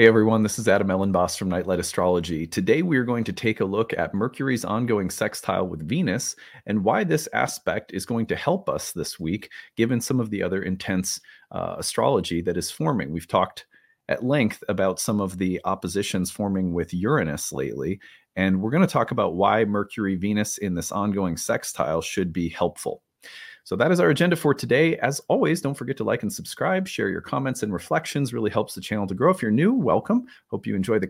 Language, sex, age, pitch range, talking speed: English, male, 30-49, 95-130 Hz, 205 wpm